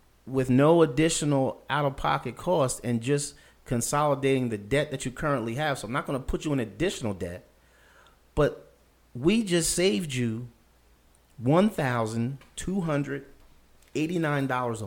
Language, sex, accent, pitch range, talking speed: English, male, American, 115-155 Hz, 120 wpm